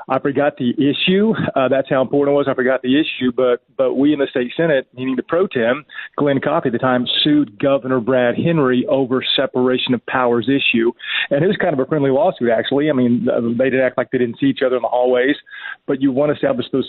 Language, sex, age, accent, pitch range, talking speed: English, male, 40-59, American, 120-135 Hz, 240 wpm